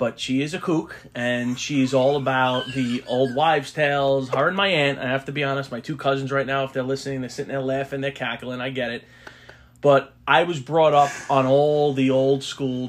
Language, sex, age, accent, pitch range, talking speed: English, male, 30-49, American, 115-135 Hz, 230 wpm